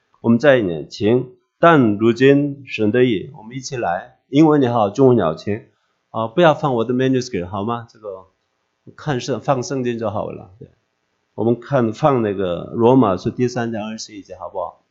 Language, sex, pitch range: English, male, 110-135 Hz